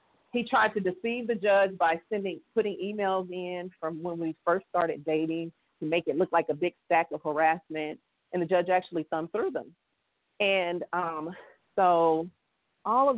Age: 40-59